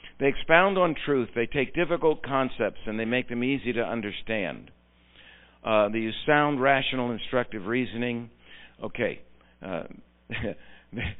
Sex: male